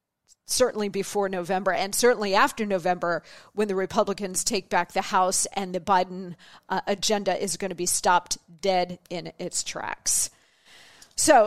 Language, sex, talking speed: English, female, 150 wpm